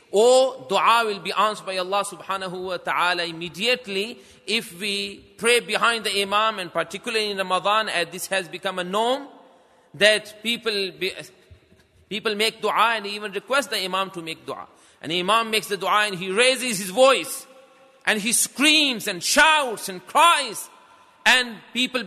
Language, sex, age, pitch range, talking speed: English, male, 40-59, 185-250 Hz, 170 wpm